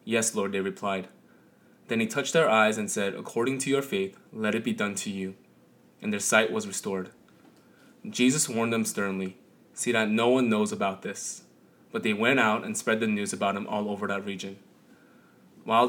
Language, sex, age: English, male, 20-39